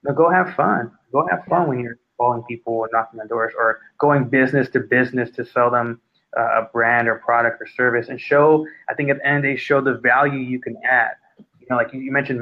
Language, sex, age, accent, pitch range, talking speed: English, male, 20-39, American, 125-155 Hz, 230 wpm